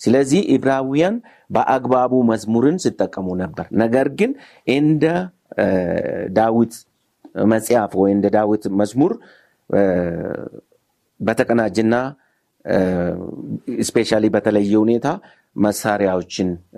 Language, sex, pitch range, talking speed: Amharic, male, 95-125 Hz, 70 wpm